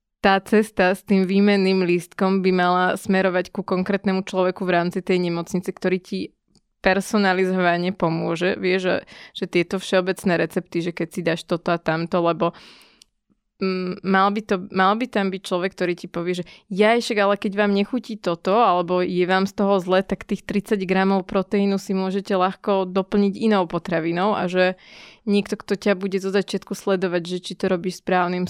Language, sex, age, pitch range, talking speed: Slovak, female, 20-39, 175-195 Hz, 175 wpm